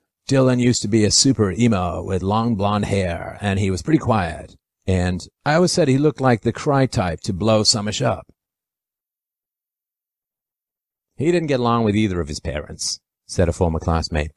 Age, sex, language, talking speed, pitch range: 50-69, male, English, 180 wpm, 90-120 Hz